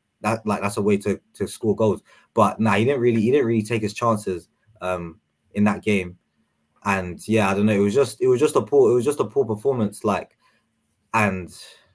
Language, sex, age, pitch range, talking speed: English, male, 20-39, 100-120 Hz, 225 wpm